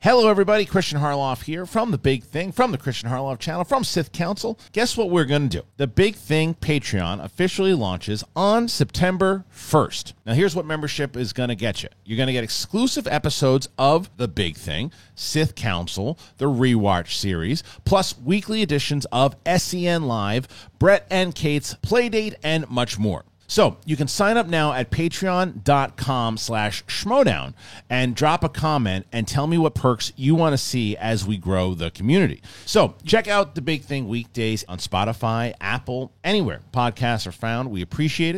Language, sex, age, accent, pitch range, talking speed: English, male, 40-59, American, 100-155 Hz, 170 wpm